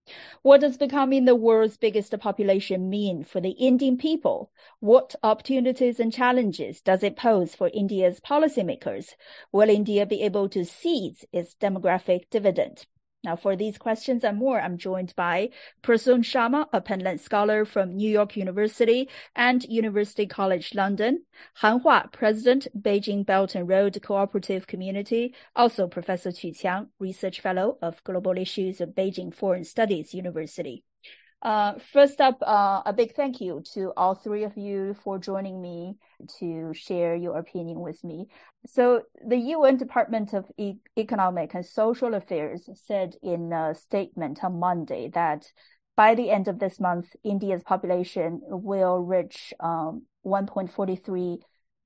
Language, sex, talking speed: English, female, 145 wpm